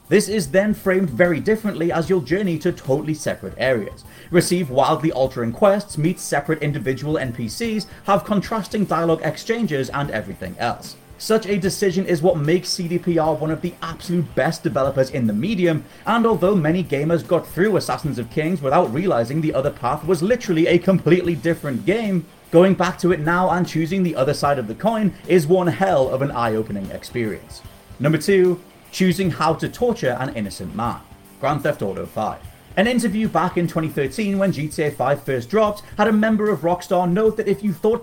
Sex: male